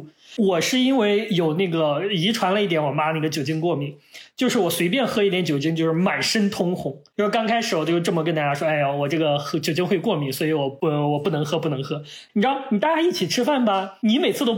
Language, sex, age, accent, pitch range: Chinese, male, 20-39, native, 165-240 Hz